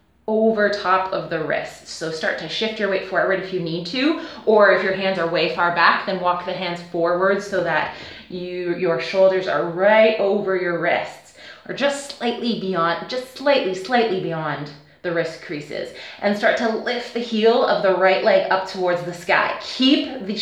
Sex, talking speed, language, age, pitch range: female, 195 wpm, English, 20-39, 180-225 Hz